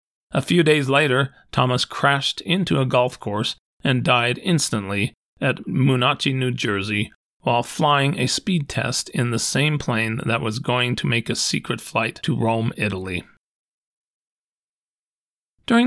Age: 40-59